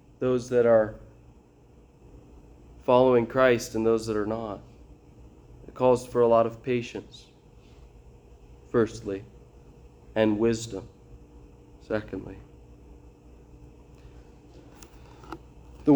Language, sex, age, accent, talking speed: English, male, 30-49, American, 85 wpm